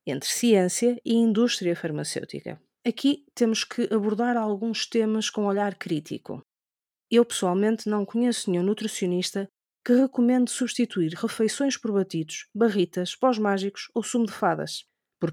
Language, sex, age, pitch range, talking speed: Portuguese, female, 30-49, 185-235 Hz, 135 wpm